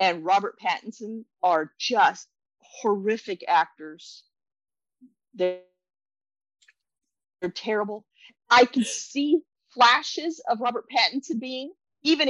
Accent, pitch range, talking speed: American, 190-285 Hz, 90 wpm